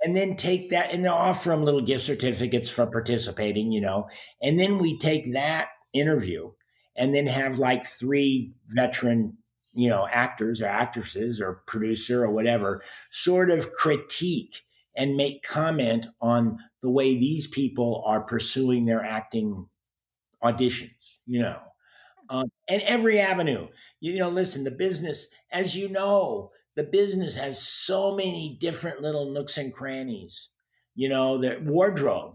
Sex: male